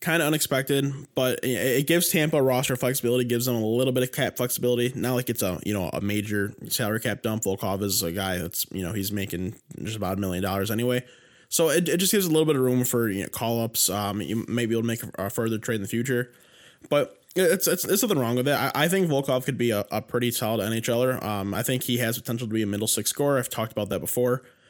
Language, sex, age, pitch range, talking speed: English, male, 20-39, 105-125 Hz, 255 wpm